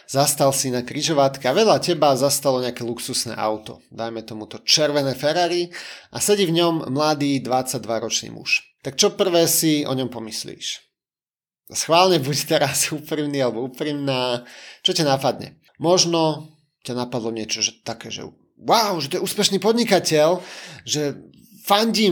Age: 30-49